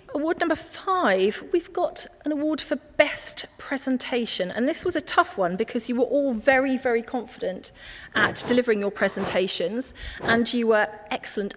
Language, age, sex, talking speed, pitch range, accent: English, 40-59, female, 160 wpm, 210-275 Hz, British